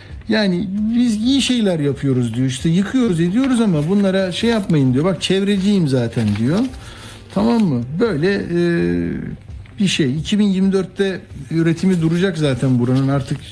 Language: Turkish